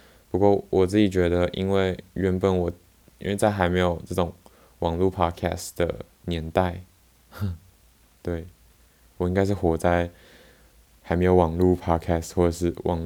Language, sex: Chinese, male